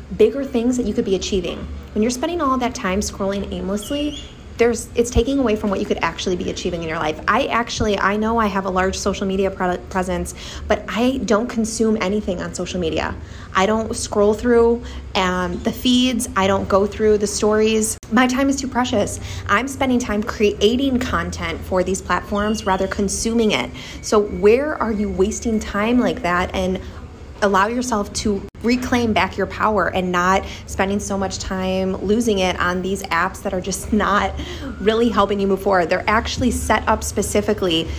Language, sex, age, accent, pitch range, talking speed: English, female, 20-39, American, 190-230 Hz, 190 wpm